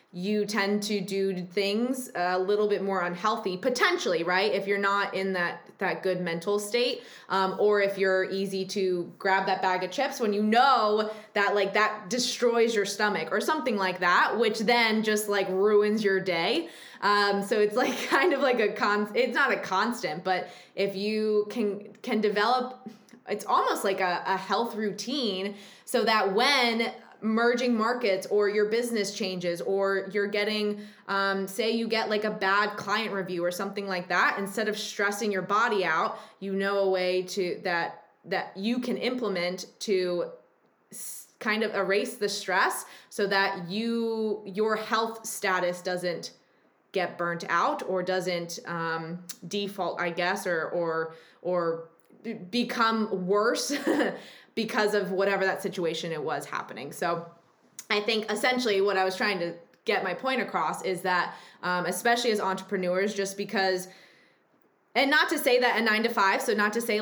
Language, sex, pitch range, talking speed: English, female, 190-220 Hz, 170 wpm